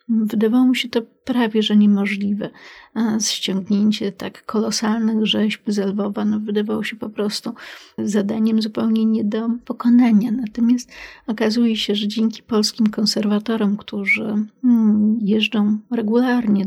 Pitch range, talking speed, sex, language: 200-220 Hz, 120 wpm, female, Polish